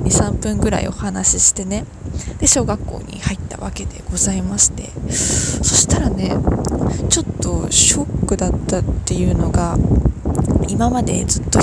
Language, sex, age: Japanese, female, 20-39